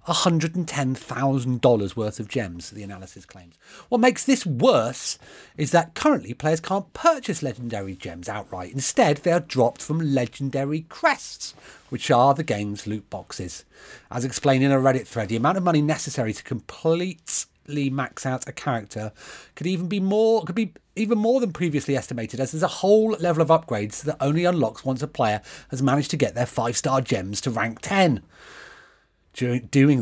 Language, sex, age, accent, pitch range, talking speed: English, male, 40-59, British, 110-160 Hz, 170 wpm